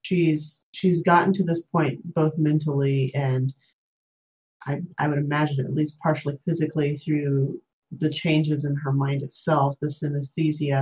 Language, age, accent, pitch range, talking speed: English, 30-49, American, 140-165 Hz, 145 wpm